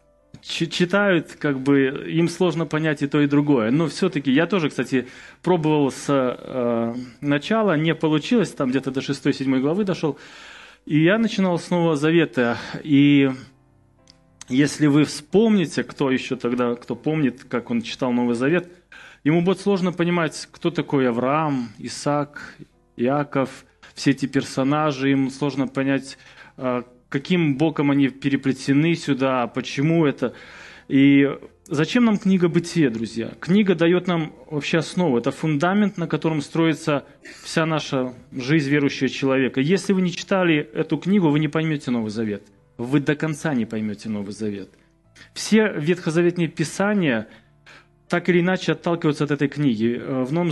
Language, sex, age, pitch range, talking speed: Russian, male, 20-39, 130-165 Hz, 145 wpm